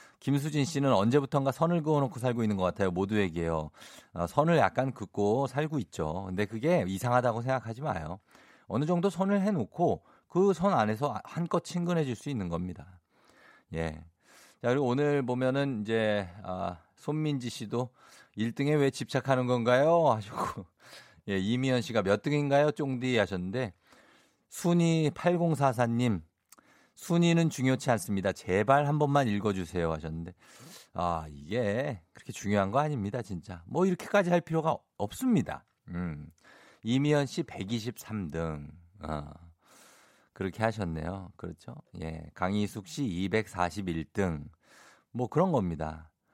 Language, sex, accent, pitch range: Korean, male, native, 95-145 Hz